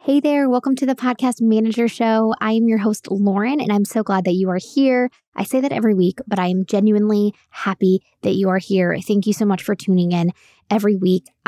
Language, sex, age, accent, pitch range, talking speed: English, female, 20-39, American, 190-240 Hz, 230 wpm